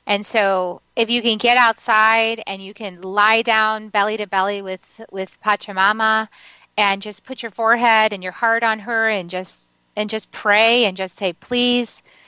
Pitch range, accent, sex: 195-230 Hz, American, female